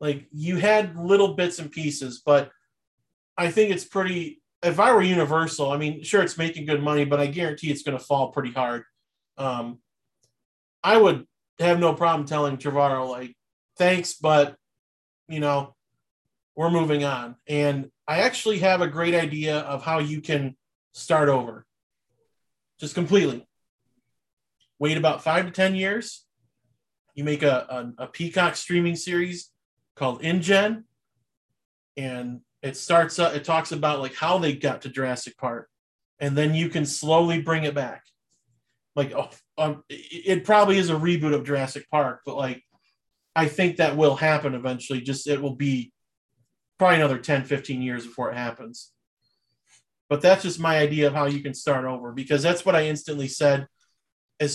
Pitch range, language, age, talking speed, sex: 130-165 Hz, English, 30-49, 165 wpm, male